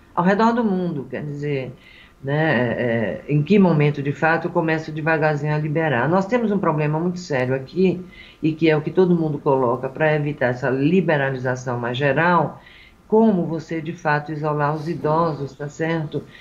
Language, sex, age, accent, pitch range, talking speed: Portuguese, female, 50-69, Brazilian, 135-175 Hz, 170 wpm